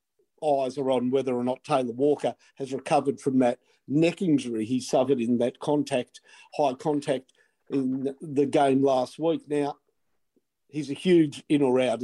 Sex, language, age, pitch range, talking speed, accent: male, English, 50-69, 130-165 Hz, 165 wpm, Australian